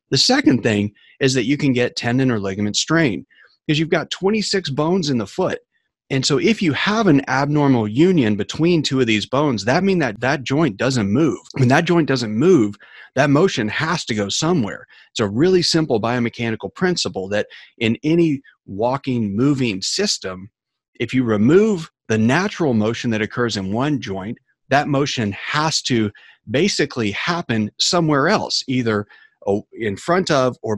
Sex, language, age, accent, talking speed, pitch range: male, English, 30-49, American, 170 wpm, 110-150 Hz